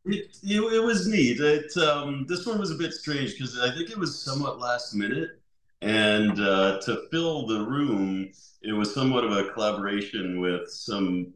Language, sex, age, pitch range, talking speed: English, male, 40-59, 80-110 Hz, 185 wpm